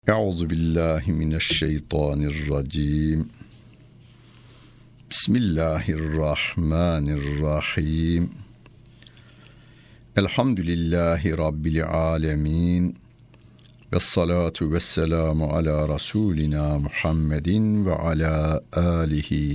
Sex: male